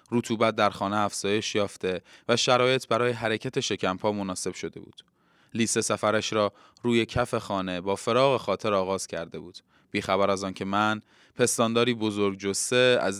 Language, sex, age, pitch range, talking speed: Persian, male, 20-39, 100-125 Hz, 150 wpm